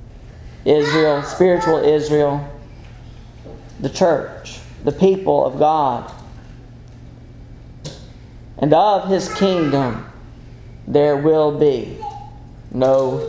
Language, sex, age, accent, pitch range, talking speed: English, male, 40-59, American, 120-160 Hz, 75 wpm